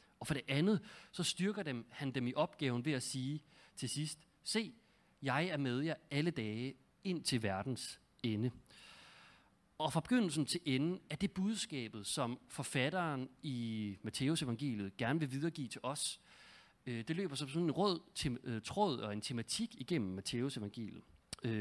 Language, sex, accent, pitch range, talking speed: Danish, male, native, 120-165 Hz, 165 wpm